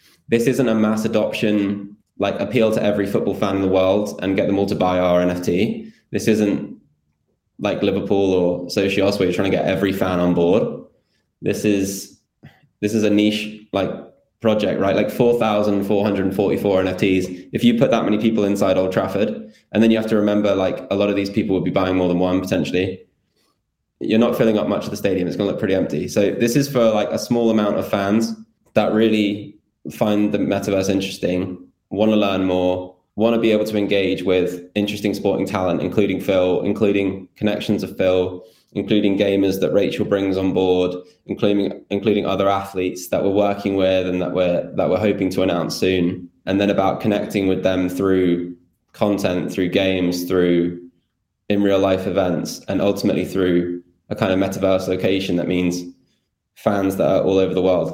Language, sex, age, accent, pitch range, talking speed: English, male, 10-29, British, 90-105 Hz, 190 wpm